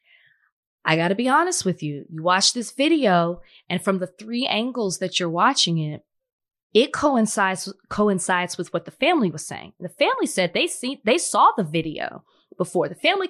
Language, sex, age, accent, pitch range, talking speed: English, female, 20-39, American, 165-195 Hz, 185 wpm